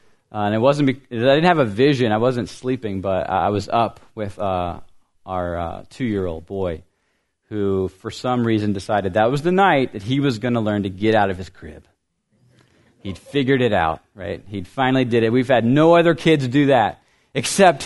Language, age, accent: English, 30-49, American